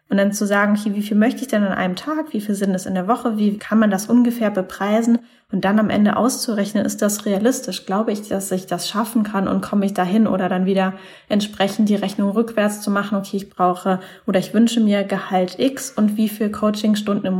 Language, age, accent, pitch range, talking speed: German, 10-29, German, 195-215 Hz, 235 wpm